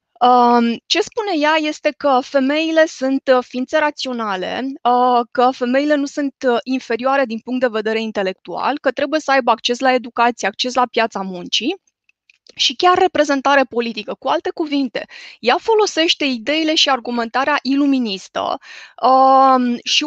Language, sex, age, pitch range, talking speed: Romanian, female, 20-39, 240-300 Hz, 135 wpm